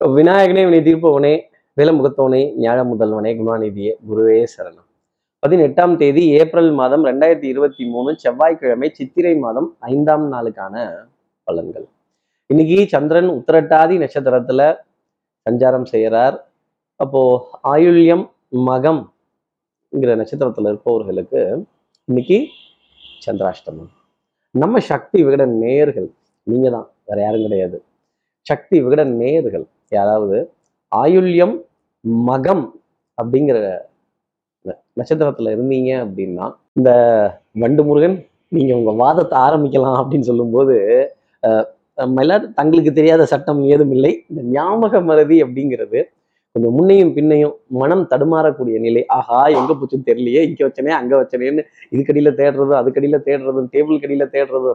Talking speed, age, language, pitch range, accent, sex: 100 wpm, 30-49, Tamil, 125-160 Hz, native, male